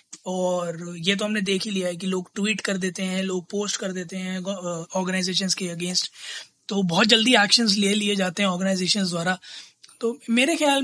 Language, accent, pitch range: Hindi, native, 185-225 Hz